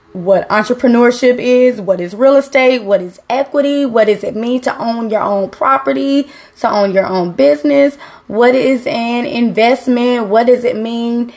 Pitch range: 185-245 Hz